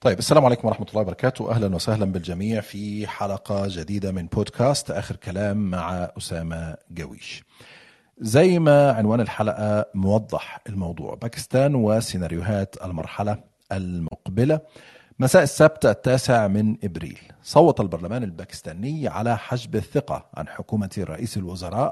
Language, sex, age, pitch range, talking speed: Arabic, male, 40-59, 95-125 Hz, 120 wpm